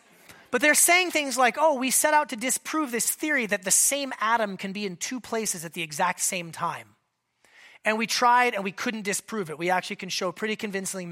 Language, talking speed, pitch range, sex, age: English, 220 wpm, 185-245 Hz, male, 30-49